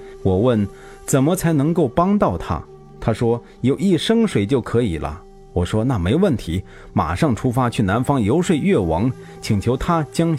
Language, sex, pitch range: Chinese, male, 100-160 Hz